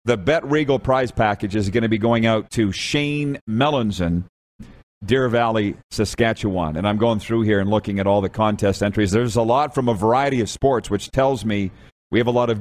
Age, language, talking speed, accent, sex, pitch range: 40-59, English, 215 wpm, American, male, 100-130 Hz